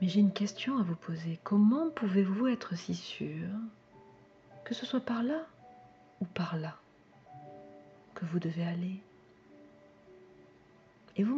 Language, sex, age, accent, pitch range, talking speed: French, female, 40-59, French, 155-215 Hz, 135 wpm